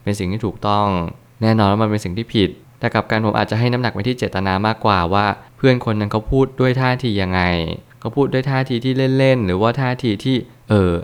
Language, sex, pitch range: Thai, male, 100-120 Hz